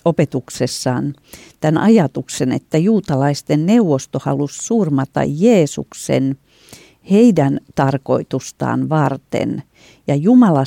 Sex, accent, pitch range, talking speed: female, native, 140-185 Hz, 80 wpm